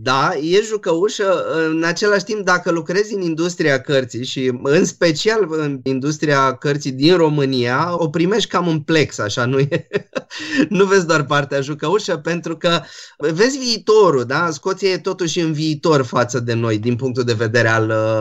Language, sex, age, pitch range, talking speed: Romanian, male, 20-39, 120-170 Hz, 165 wpm